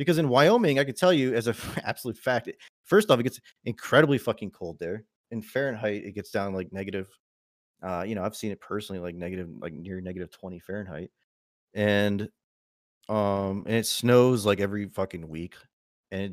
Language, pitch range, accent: English, 100-120 Hz, American